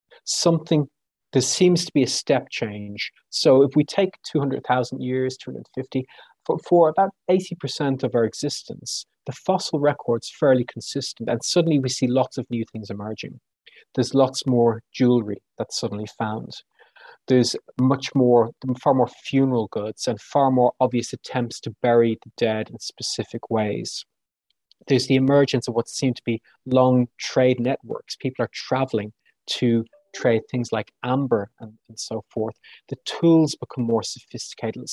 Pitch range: 115-140 Hz